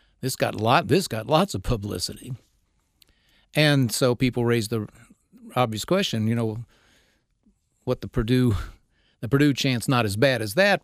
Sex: male